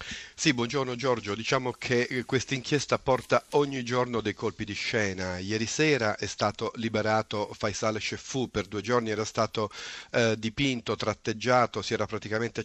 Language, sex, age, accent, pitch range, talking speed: Italian, male, 40-59, native, 105-125 Hz, 150 wpm